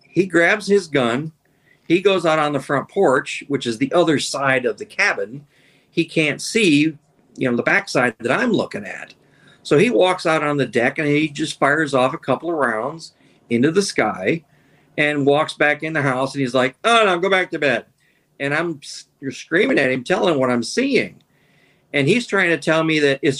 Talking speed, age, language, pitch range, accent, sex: 215 wpm, 50-69, English, 135-175 Hz, American, male